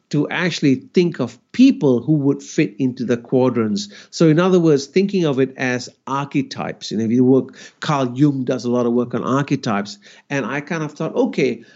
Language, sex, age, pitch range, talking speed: English, male, 50-69, 130-185 Hz, 200 wpm